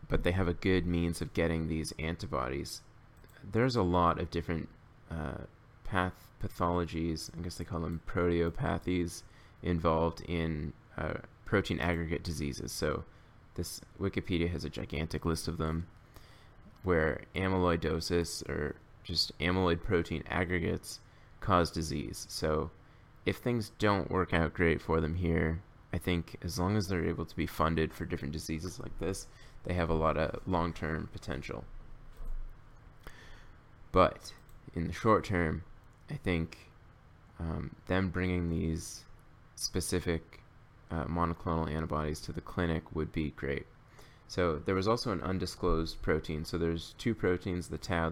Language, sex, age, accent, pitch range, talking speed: English, male, 20-39, American, 80-95 Hz, 145 wpm